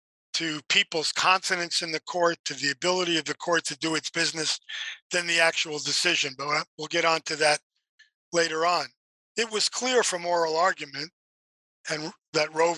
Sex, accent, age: male, American, 50-69